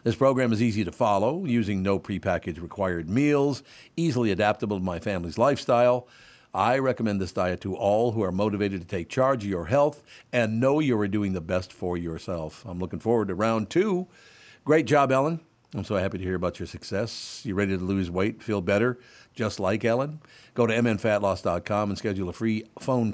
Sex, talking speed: male, 195 wpm